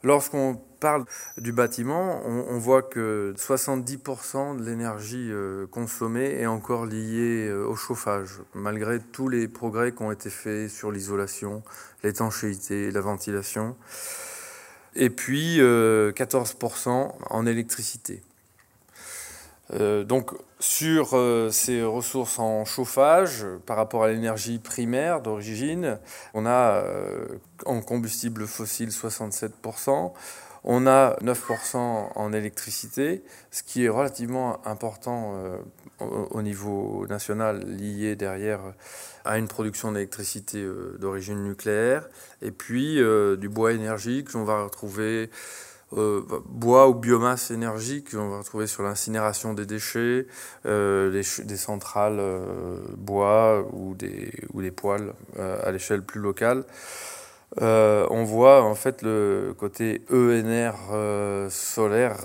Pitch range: 105-125 Hz